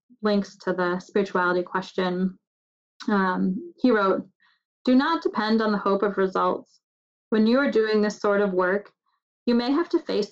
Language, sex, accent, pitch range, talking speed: English, female, American, 195-235 Hz, 170 wpm